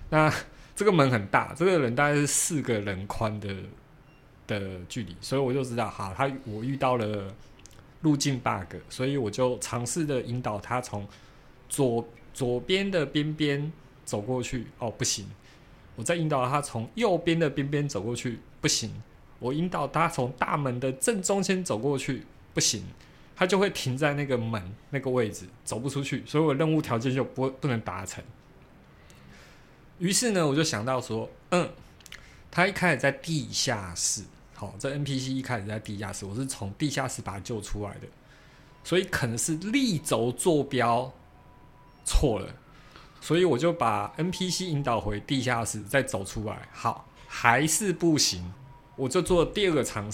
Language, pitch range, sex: Chinese, 110-150 Hz, male